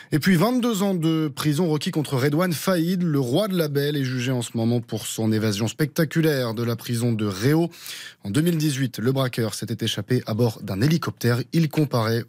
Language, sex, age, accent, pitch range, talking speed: French, male, 20-39, French, 115-155 Hz, 200 wpm